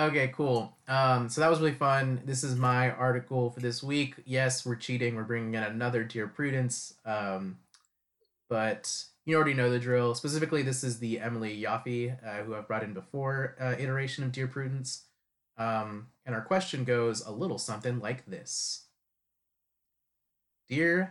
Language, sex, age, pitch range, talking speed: English, male, 30-49, 110-145 Hz, 165 wpm